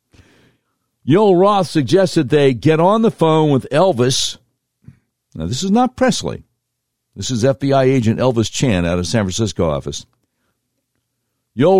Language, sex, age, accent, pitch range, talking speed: English, male, 60-79, American, 120-155 Hz, 135 wpm